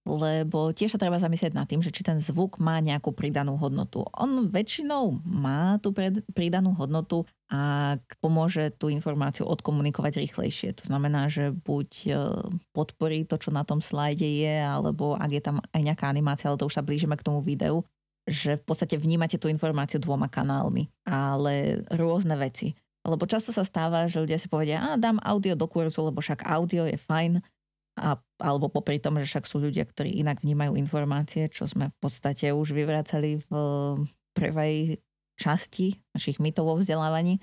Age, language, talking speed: 20-39, Slovak, 170 wpm